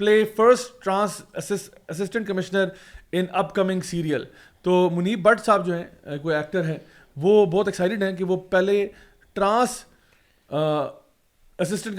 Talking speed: 130 wpm